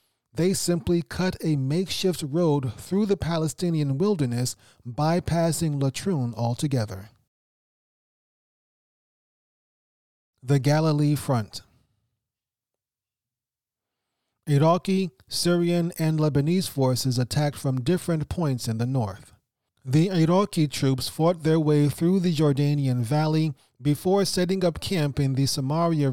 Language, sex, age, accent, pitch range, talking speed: English, male, 30-49, American, 125-175 Hz, 105 wpm